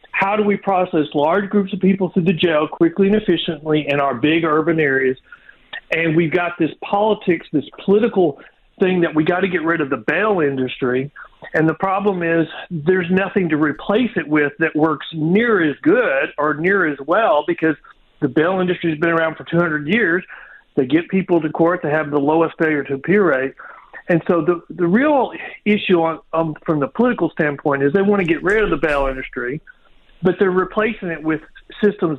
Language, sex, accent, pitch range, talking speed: English, male, American, 155-205 Hz, 200 wpm